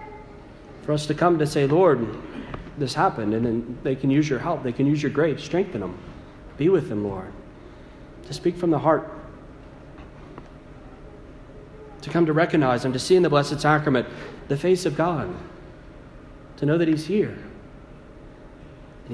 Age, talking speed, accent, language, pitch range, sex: 40-59, 165 wpm, American, English, 125-155 Hz, male